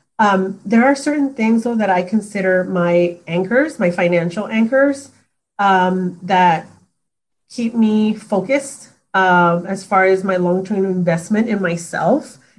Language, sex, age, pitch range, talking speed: English, female, 30-49, 185-230 Hz, 135 wpm